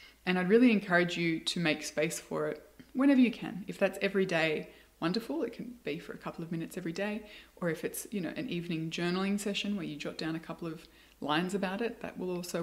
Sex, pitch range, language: female, 160-200 Hz, English